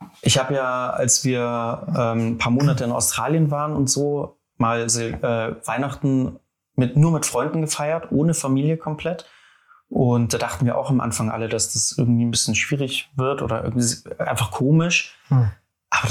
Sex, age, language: male, 30-49, German